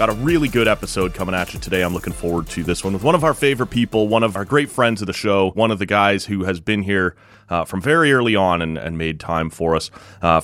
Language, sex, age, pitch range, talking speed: English, male, 30-49, 90-120 Hz, 280 wpm